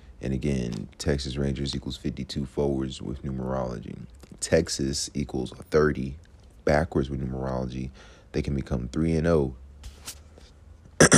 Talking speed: 100 wpm